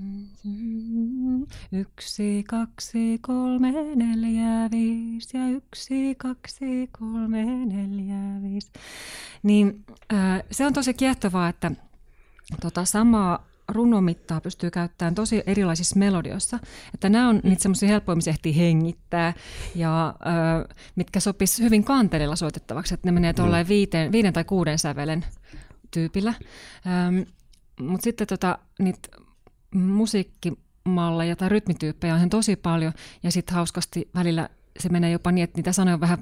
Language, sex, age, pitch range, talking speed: Finnish, female, 30-49, 170-215 Hz, 120 wpm